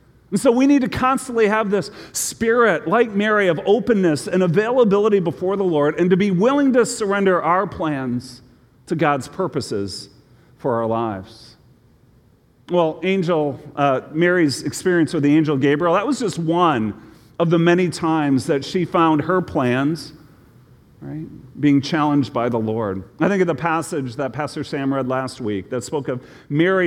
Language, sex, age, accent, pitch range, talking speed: English, male, 40-59, American, 140-185 Hz, 165 wpm